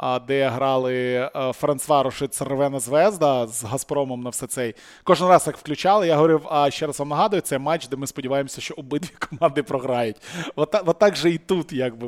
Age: 20-39